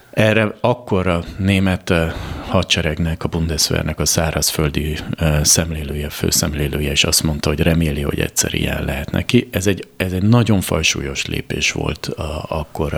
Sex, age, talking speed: male, 30-49, 145 wpm